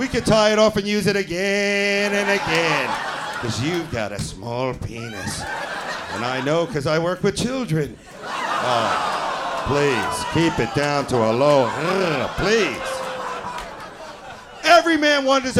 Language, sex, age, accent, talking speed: English, male, 40-59, American, 145 wpm